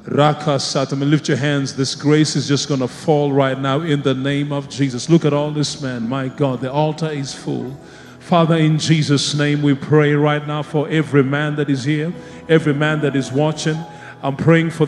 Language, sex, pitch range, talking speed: English, male, 145-175 Hz, 210 wpm